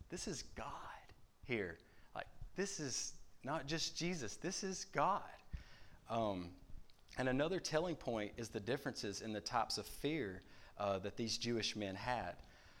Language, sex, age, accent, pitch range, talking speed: English, male, 30-49, American, 100-125 Hz, 150 wpm